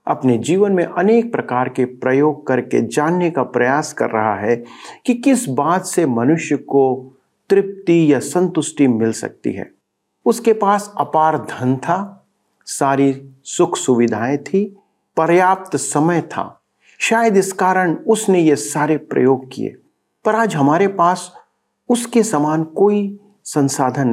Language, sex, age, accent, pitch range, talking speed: Hindi, male, 50-69, native, 130-195 Hz, 135 wpm